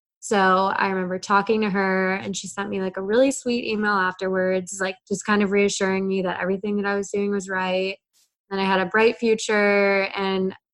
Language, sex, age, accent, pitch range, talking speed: English, female, 20-39, American, 185-210 Hz, 205 wpm